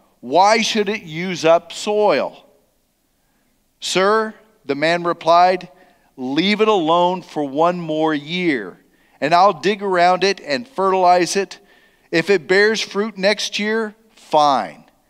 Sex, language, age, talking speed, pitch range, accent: male, English, 50-69, 125 wpm, 150-200 Hz, American